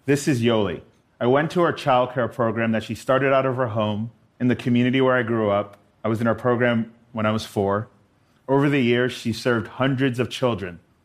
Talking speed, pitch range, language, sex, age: 215 wpm, 110-130 Hz, English, male, 30-49